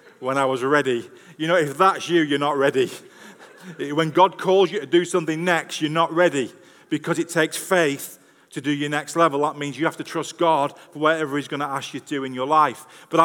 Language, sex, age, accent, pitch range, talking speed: English, male, 40-59, British, 165-215 Hz, 235 wpm